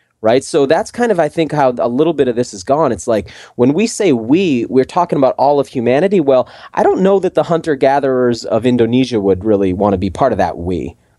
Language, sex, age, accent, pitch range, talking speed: English, male, 30-49, American, 105-140 Hz, 240 wpm